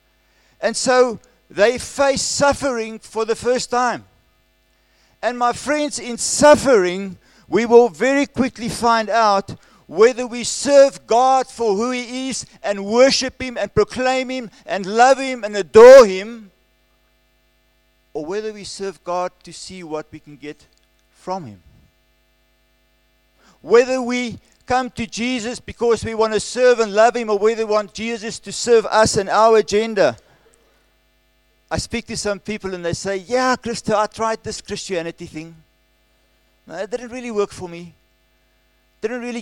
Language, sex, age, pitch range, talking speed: English, male, 50-69, 190-240 Hz, 155 wpm